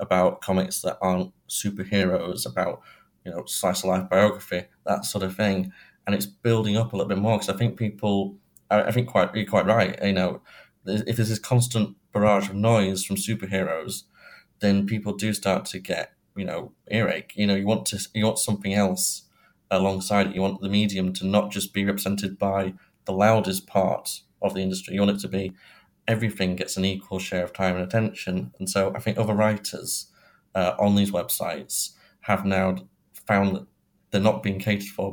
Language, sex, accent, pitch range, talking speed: English, male, British, 95-105 Hz, 195 wpm